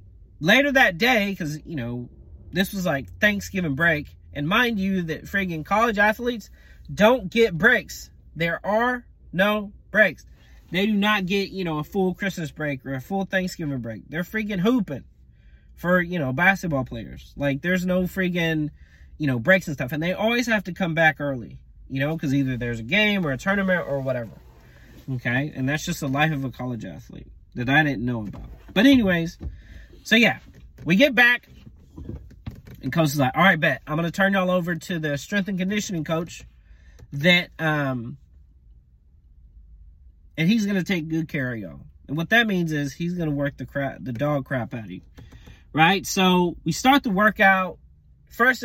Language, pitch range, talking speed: English, 130-195 Hz, 185 wpm